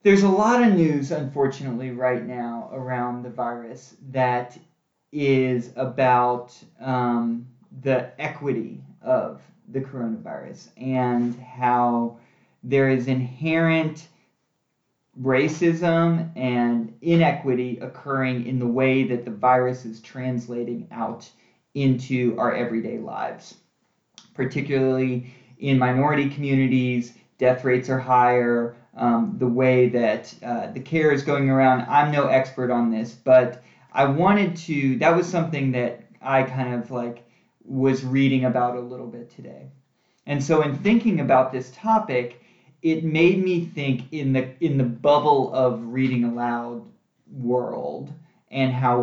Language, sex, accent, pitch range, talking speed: English, male, American, 120-140 Hz, 130 wpm